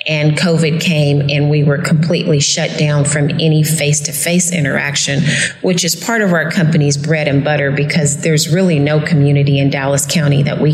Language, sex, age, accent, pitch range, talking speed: English, female, 30-49, American, 150-175 Hz, 190 wpm